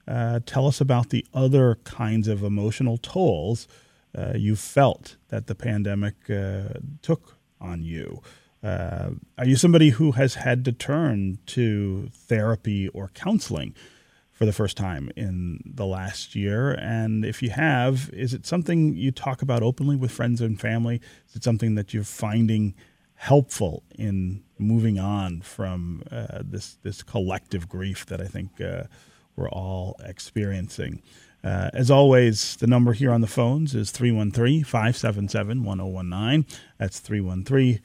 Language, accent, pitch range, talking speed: English, American, 100-130 Hz, 145 wpm